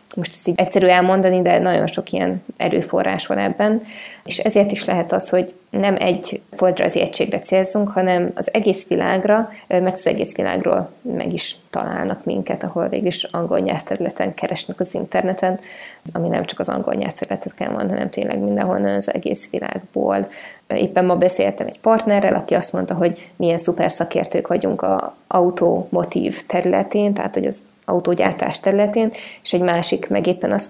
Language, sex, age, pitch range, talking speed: Hungarian, female, 20-39, 175-200 Hz, 160 wpm